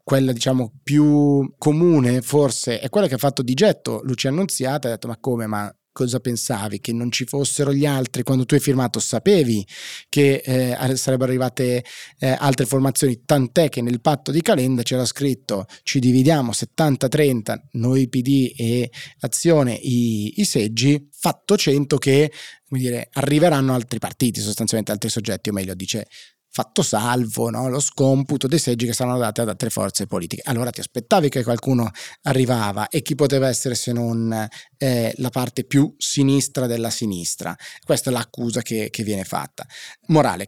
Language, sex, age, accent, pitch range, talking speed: Italian, male, 30-49, native, 120-145 Hz, 165 wpm